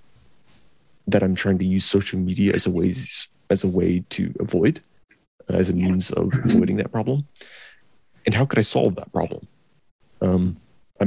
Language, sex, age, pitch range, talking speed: English, male, 30-49, 90-105 Hz, 175 wpm